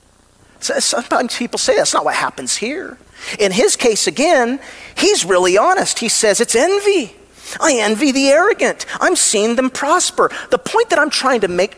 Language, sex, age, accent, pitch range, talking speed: English, male, 40-59, American, 210-320 Hz, 175 wpm